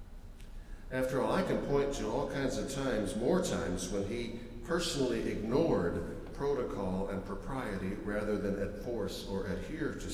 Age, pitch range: 60-79, 90-115 Hz